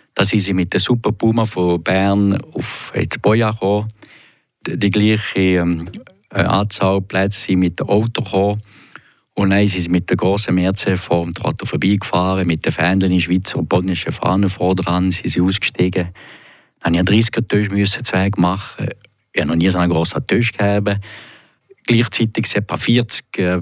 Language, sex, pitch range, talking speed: German, male, 90-105 Hz, 160 wpm